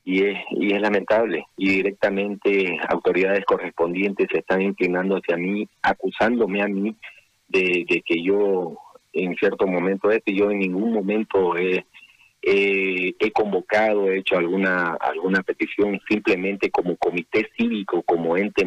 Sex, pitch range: male, 95-105 Hz